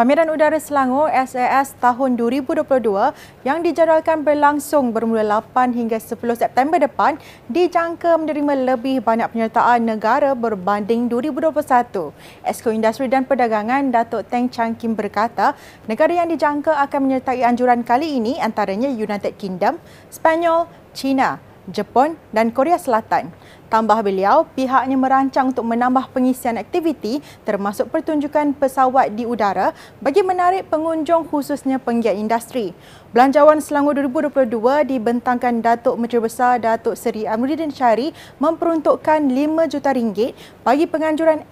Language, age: Malay, 30-49